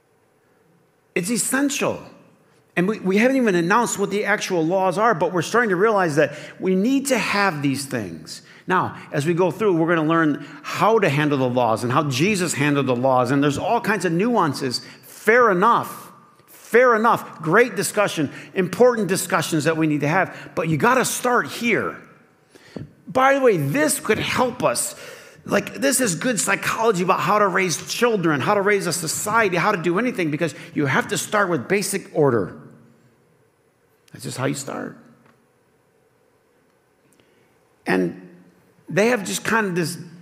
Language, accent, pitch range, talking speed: English, American, 150-210 Hz, 175 wpm